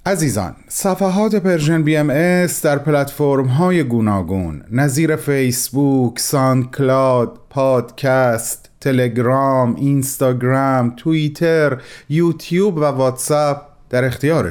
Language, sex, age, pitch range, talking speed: Persian, male, 30-49, 120-155 Hz, 85 wpm